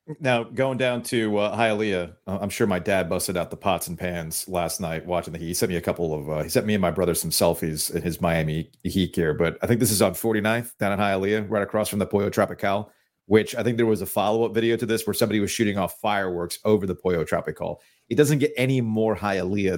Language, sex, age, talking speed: English, male, 40-59, 250 wpm